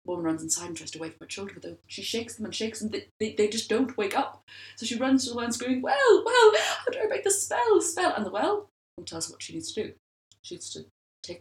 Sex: female